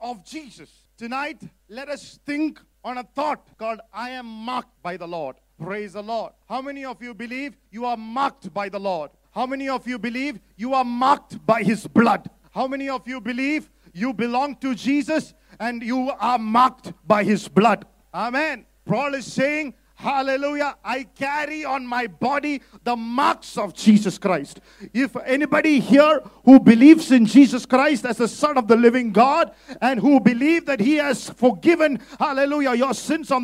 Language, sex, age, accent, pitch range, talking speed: English, male, 50-69, Indian, 240-295 Hz, 175 wpm